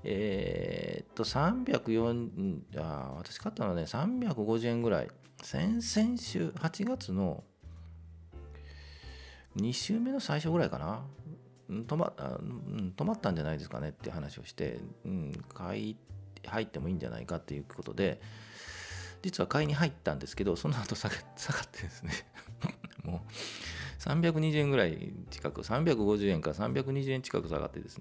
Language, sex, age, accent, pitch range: Japanese, male, 40-59, native, 80-135 Hz